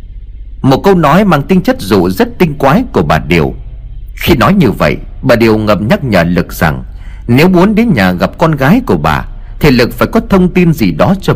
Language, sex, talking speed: Vietnamese, male, 220 wpm